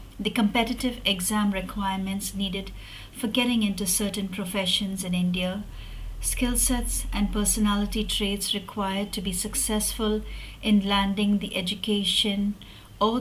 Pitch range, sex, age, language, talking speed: 190-215 Hz, female, 50-69, English, 120 wpm